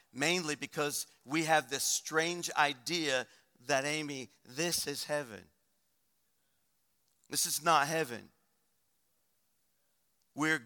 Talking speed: 95 wpm